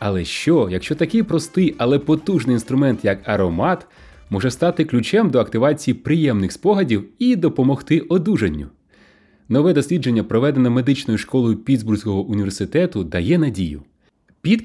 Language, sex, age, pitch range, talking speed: Ukrainian, male, 30-49, 105-155 Hz, 125 wpm